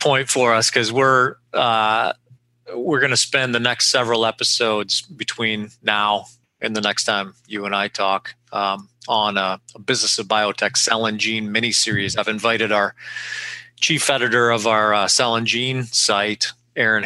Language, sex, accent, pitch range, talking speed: English, male, American, 105-125 Hz, 170 wpm